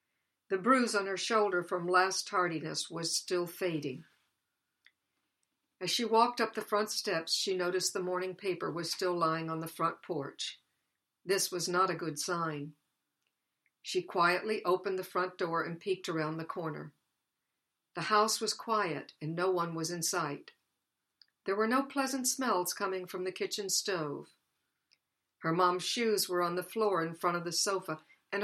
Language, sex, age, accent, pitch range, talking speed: English, female, 60-79, American, 165-195 Hz, 170 wpm